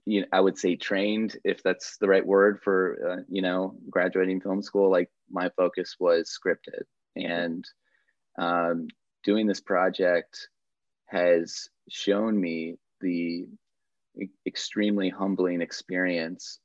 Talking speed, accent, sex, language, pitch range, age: 125 wpm, American, male, English, 85-95 Hz, 30-49